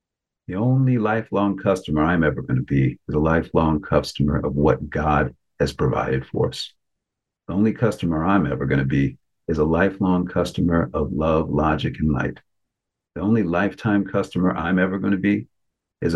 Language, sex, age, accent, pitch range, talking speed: English, male, 50-69, American, 75-95 Hz, 175 wpm